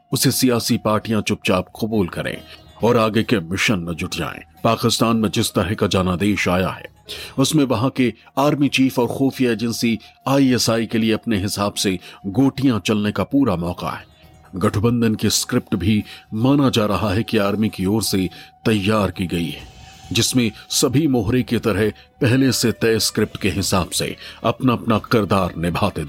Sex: male